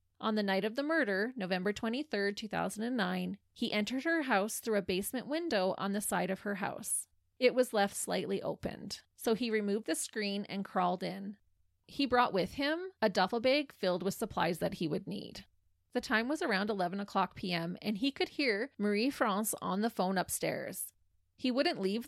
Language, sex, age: English, female, 20-39